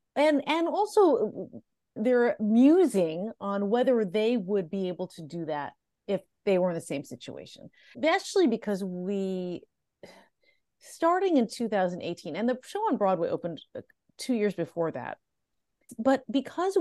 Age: 30-49